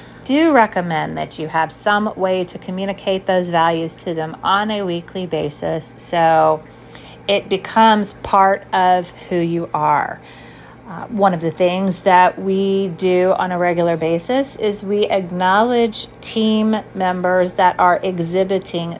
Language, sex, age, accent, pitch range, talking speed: English, female, 30-49, American, 170-200 Hz, 140 wpm